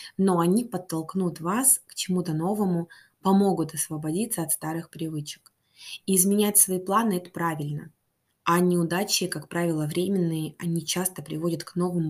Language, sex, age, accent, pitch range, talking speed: Russian, female, 20-39, native, 165-200 Hz, 135 wpm